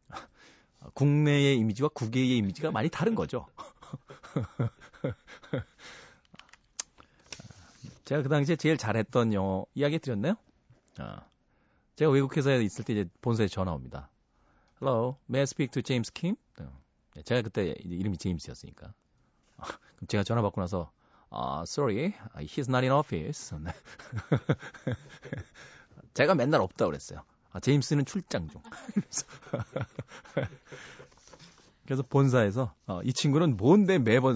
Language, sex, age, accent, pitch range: Korean, male, 40-59, native, 95-145 Hz